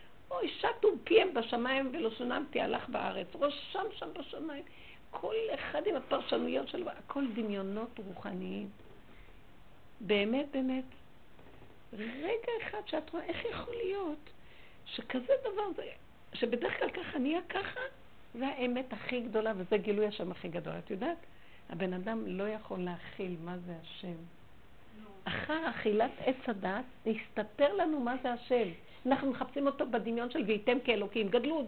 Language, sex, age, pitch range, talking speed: Hebrew, female, 50-69, 230-330 Hz, 135 wpm